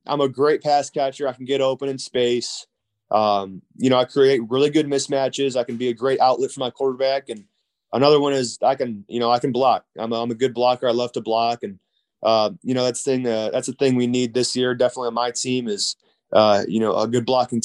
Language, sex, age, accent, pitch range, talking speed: English, male, 20-39, American, 115-135 Hz, 255 wpm